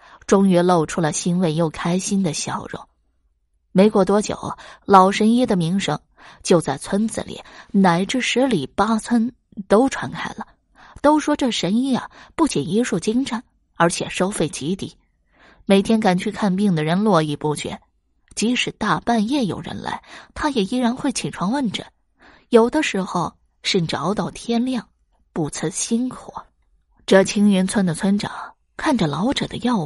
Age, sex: 20-39, female